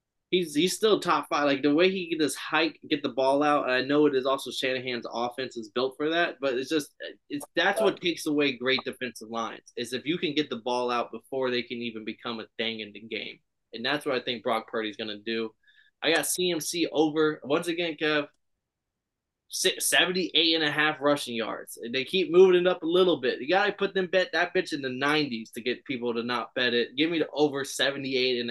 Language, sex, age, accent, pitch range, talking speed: English, male, 20-39, American, 125-160 Hz, 235 wpm